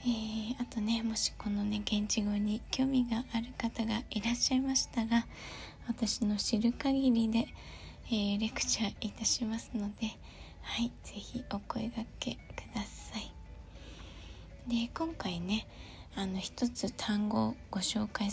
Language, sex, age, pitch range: Japanese, female, 20-39, 205-240 Hz